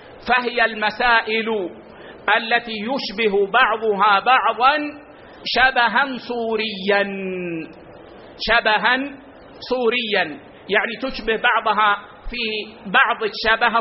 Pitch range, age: 210-250 Hz, 50-69